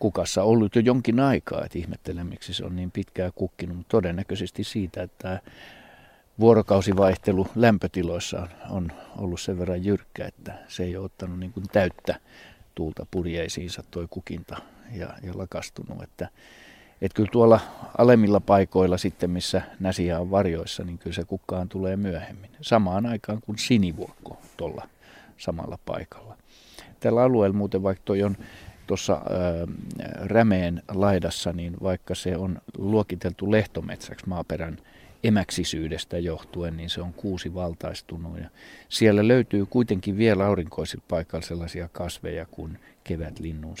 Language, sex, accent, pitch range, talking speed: Finnish, male, native, 85-100 Hz, 130 wpm